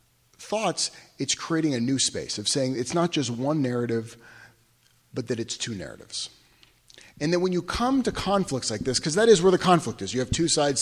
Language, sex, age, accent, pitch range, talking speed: English, male, 40-59, American, 125-180 Hz, 210 wpm